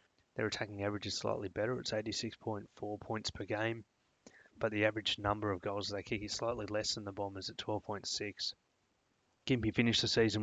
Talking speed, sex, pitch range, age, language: 180 wpm, male, 100-115 Hz, 20-39, English